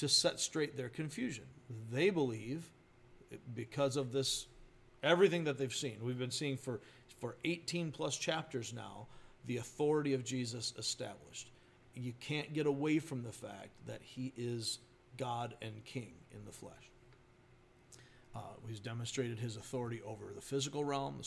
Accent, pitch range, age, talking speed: American, 120-135 Hz, 50-69, 150 wpm